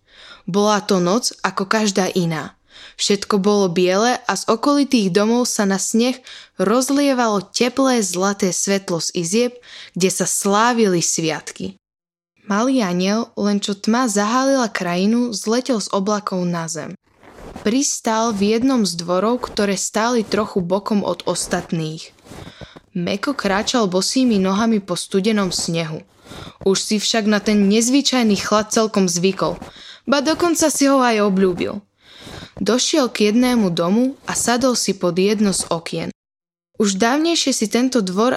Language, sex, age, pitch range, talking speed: Slovak, female, 20-39, 190-250 Hz, 135 wpm